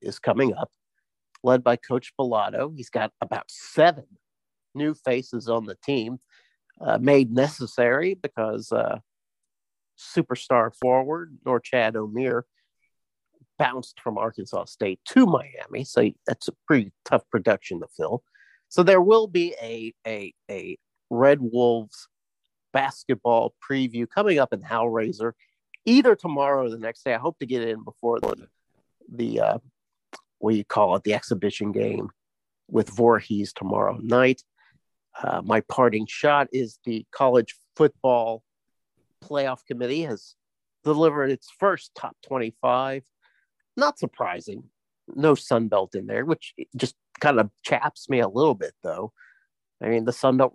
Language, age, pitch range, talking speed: English, 50-69, 115-145 Hz, 140 wpm